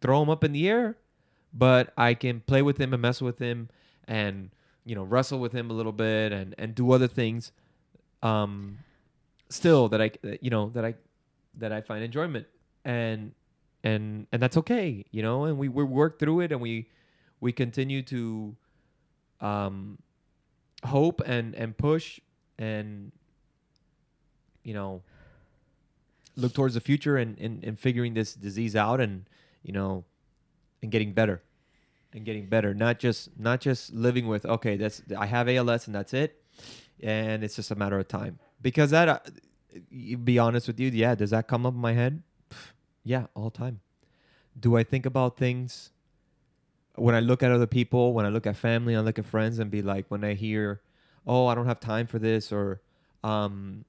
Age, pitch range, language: 20-39, 110-135 Hz, English